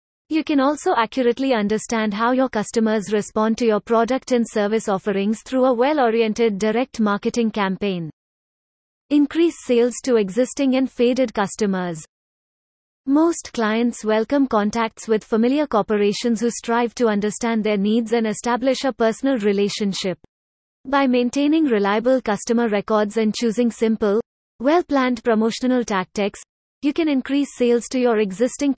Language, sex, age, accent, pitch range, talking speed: English, female, 30-49, Indian, 215-255 Hz, 135 wpm